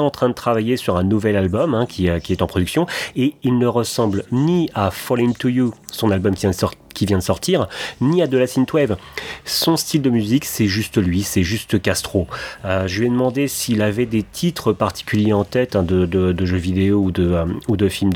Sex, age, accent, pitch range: male, 30-49, French, 95-125 Hz